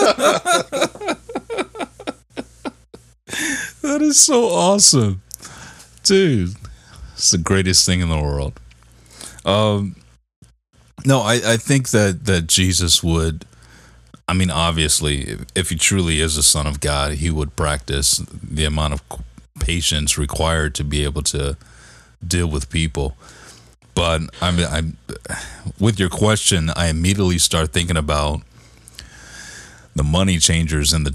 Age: 30-49